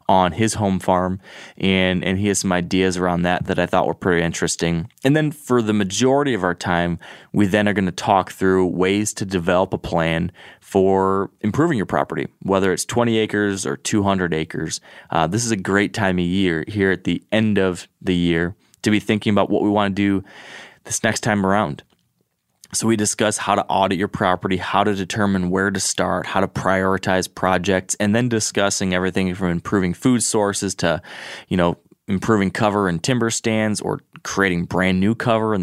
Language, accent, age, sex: English, American, 20-39, male